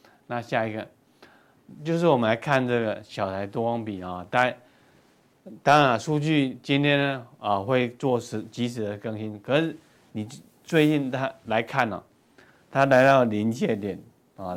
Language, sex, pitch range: Chinese, male, 105-135 Hz